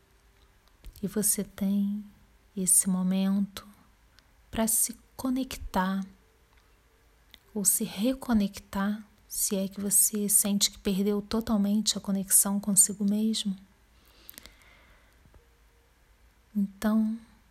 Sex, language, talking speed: female, Portuguese, 80 wpm